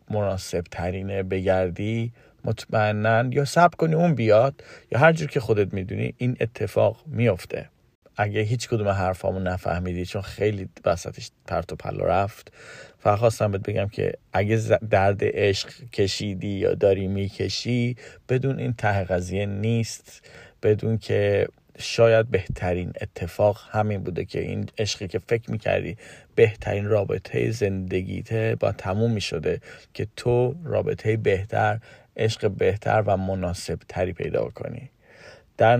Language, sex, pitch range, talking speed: Persian, male, 95-115 Hz, 125 wpm